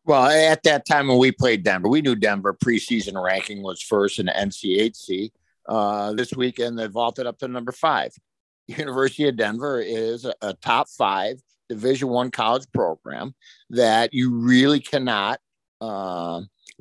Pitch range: 105-145 Hz